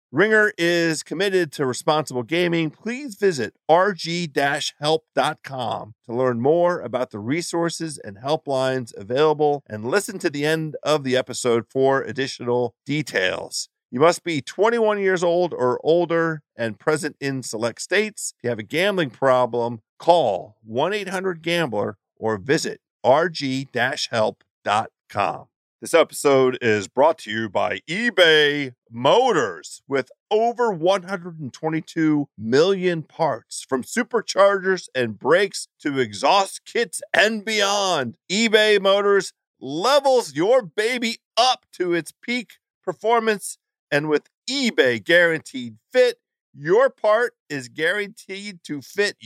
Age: 40-59